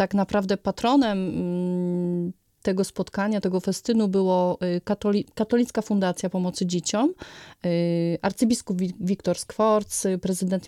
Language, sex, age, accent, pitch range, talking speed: Polish, female, 30-49, native, 180-220 Hz, 95 wpm